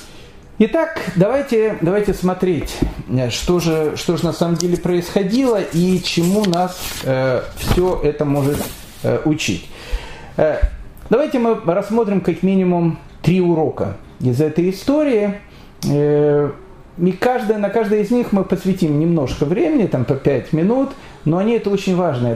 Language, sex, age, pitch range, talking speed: Russian, male, 40-59, 145-195 Hz, 130 wpm